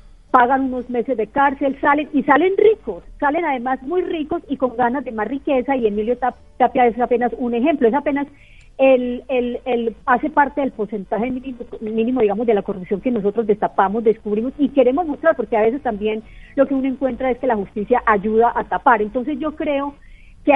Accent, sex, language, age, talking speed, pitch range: Colombian, female, Spanish, 40-59, 195 wpm, 215-265 Hz